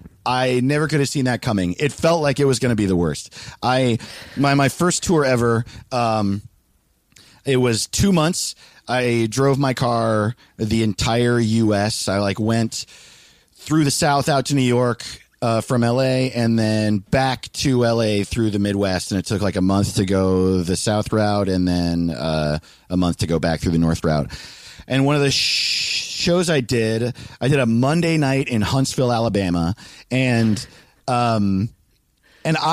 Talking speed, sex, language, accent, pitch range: 180 wpm, male, English, American, 105-145 Hz